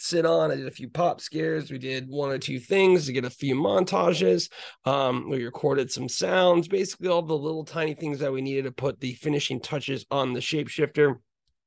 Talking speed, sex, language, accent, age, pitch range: 210 wpm, male, English, American, 30-49, 135-160 Hz